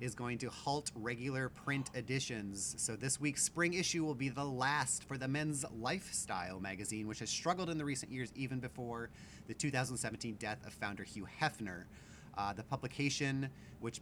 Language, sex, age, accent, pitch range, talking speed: English, male, 30-49, American, 105-130 Hz, 175 wpm